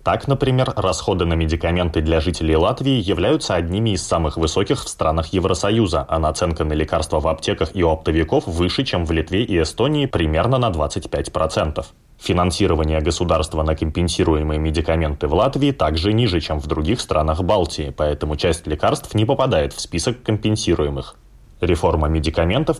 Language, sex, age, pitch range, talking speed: Russian, male, 20-39, 80-105 Hz, 150 wpm